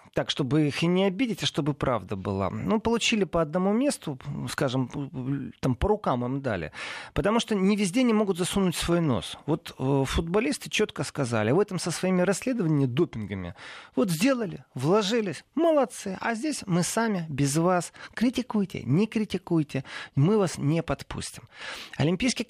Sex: male